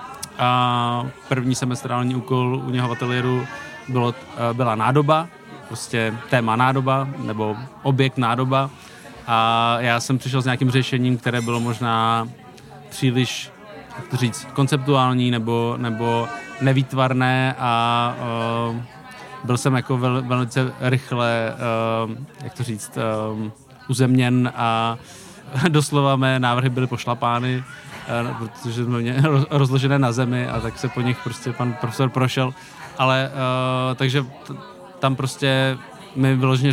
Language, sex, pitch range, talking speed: Czech, male, 120-130 Hz, 125 wpm